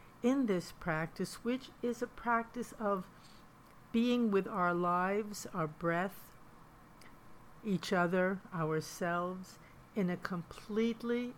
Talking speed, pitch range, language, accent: 105 wpm, 180-220 Hz, English, American